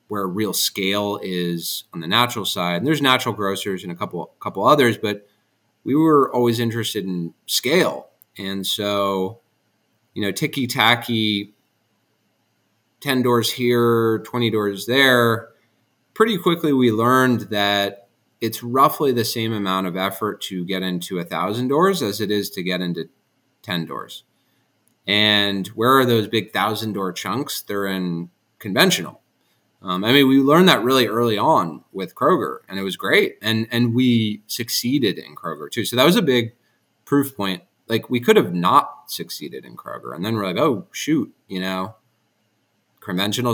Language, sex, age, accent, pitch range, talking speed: English, male, 30-49, American, 100-120 Hz, 160 wpm